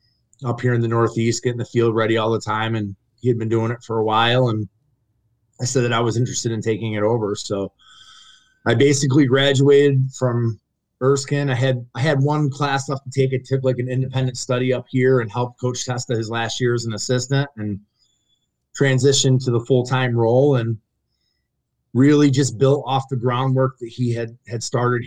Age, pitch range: 30-49, 110-130 Hz